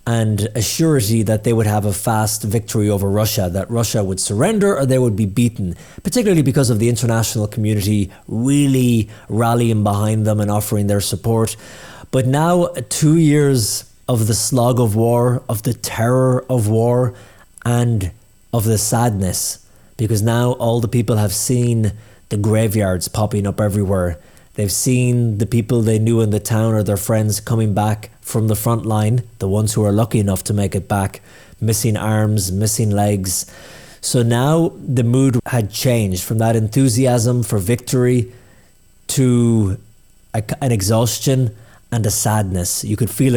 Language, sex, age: English, male, 20-39